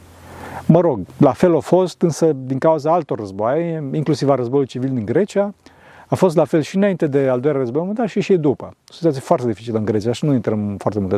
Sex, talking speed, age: male, 230 wpm, 40-59